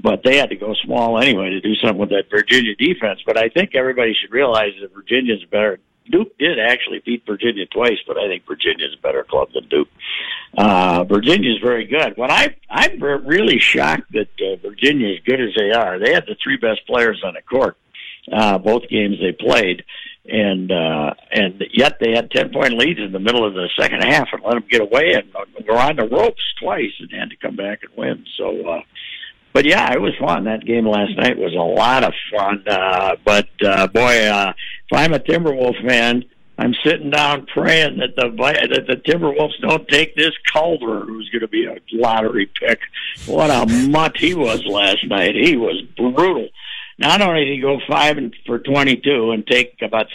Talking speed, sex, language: 205 wpm, male, English